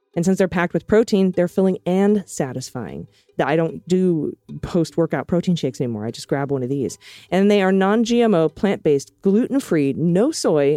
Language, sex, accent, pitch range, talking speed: English, female, American, 145-195 Hz, 175 wpm